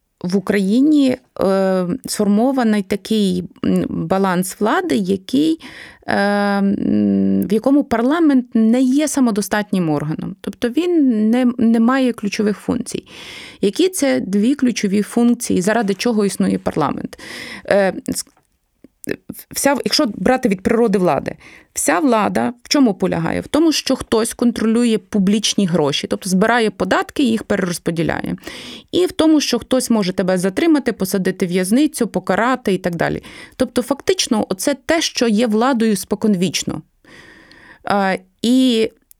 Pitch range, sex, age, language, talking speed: 200-260 Hz, female, 20-39, Ukrainian, 120 wpm